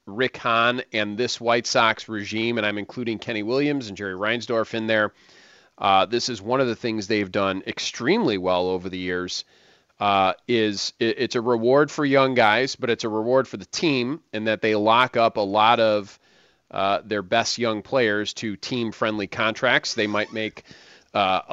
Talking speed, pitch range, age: 190 wpm, 110-140 Hz, 30-49